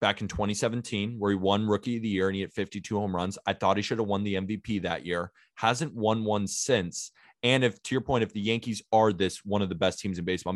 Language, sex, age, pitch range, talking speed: English, male, 20-39, 95-120 Hz, 265 wpm